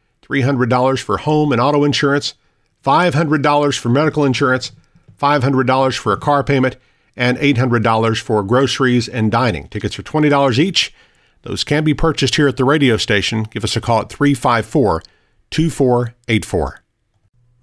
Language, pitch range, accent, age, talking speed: English, 115-145 Hz, American, 50-69, 135 wpm